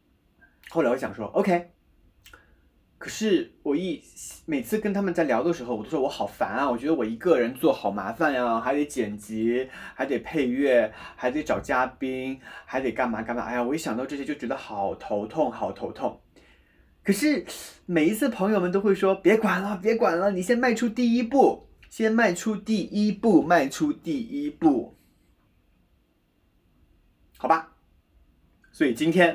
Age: 20-39